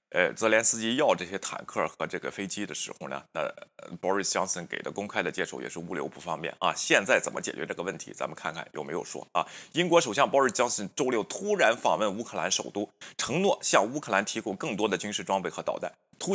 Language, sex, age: Chinese, male, 30-49